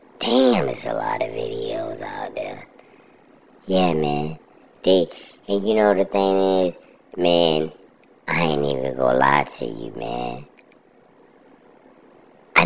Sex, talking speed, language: male, 125 wpm, English